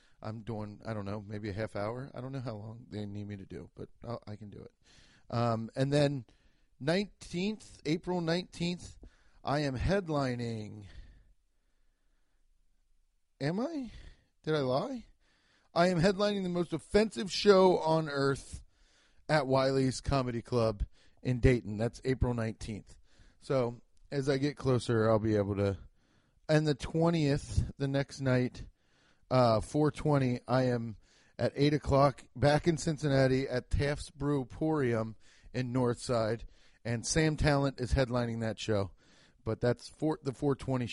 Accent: American